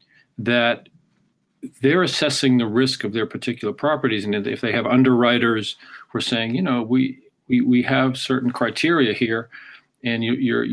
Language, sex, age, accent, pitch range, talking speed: English, male, 50-69, American, 110-135 Hz, 155 wpm